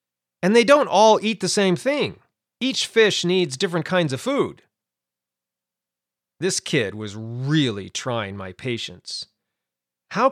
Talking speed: 135 wpm